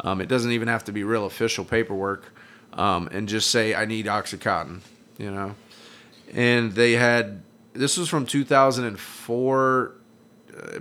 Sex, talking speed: male, 145 wpm